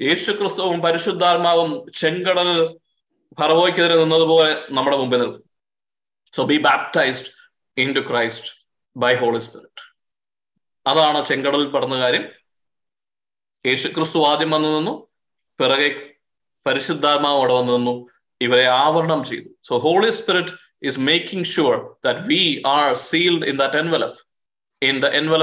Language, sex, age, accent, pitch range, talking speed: Malayalam, male, 20-39, native, 140-175 Hz, 110 wpm